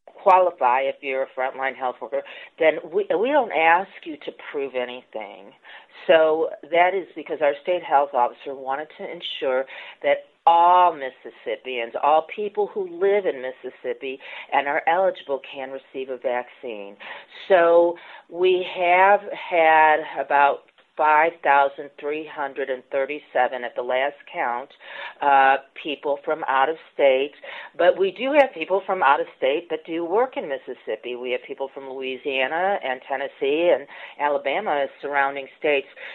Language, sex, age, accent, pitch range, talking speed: English, female, 40-59, American, 140-225 Hz, 140 wpm